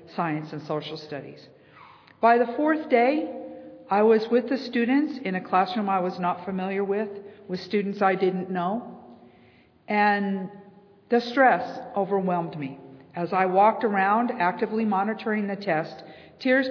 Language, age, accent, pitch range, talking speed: English, 50-69, American, 175-230 Hz, 145 wpm